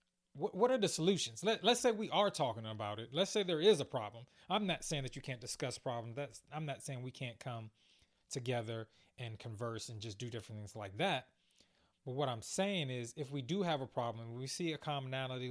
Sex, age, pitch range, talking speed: male, 20-39, 120-160 Hz, 220 wpm